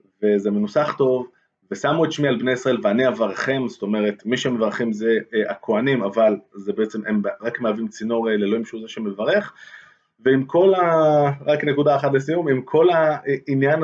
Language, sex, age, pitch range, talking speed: Hebrew, male, 20-39, 110-150 Hz, 170 wpm